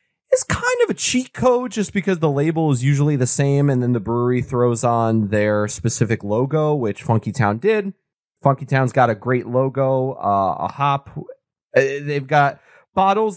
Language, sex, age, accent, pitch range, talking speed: English, male, 20-39, American, 120-155 Hz, 175 wpm